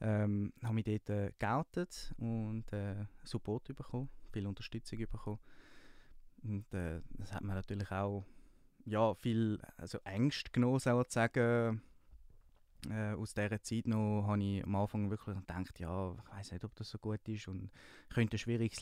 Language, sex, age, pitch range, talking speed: German, male, 20-39, 95-115 Hz, 170 wpm